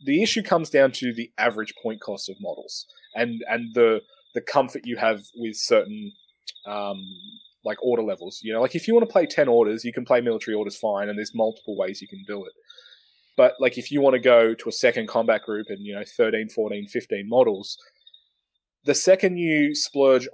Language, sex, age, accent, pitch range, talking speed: English, male, 20-39, Australian, 115-165 Hz, 210 wpm